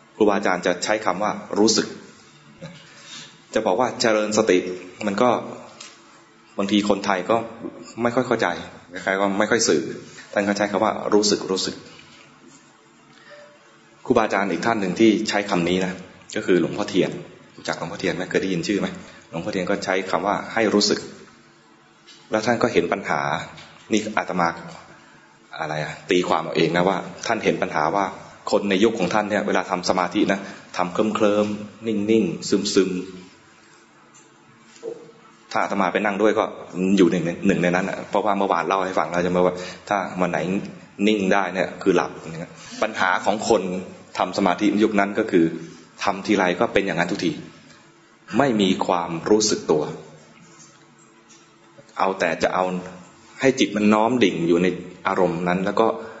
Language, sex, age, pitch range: English, male, 20-39, 90-105 Hz